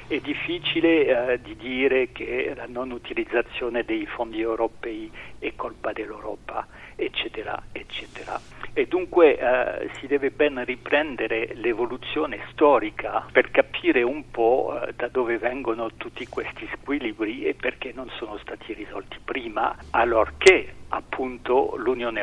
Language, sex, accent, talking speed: Italian, male, native, 120 wpm